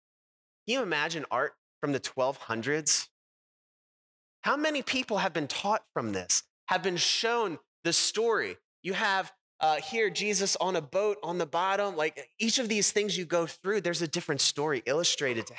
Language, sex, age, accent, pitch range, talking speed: English, male, 30-49, American, 130-190 Hz, 175 wpm